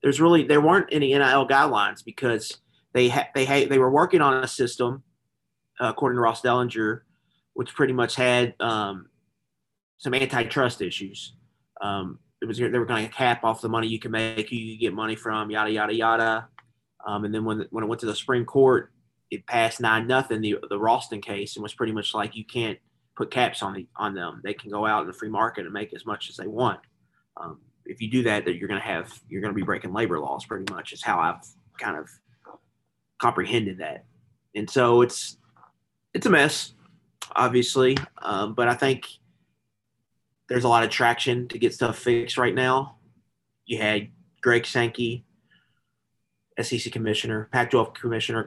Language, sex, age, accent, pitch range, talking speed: English, male, 30-49, American, 110-125 Hz, 190 wpm